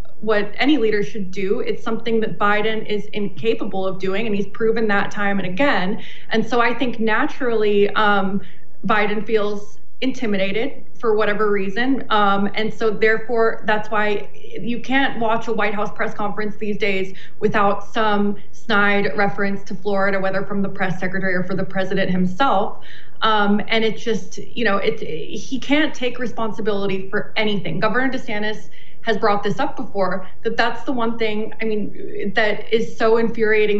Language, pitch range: English, 200-225 Hz